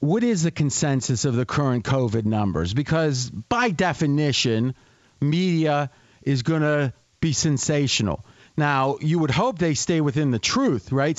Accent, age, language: American, 40-59, English